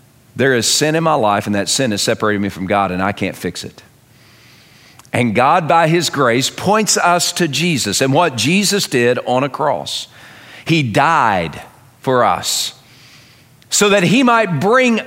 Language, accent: English, American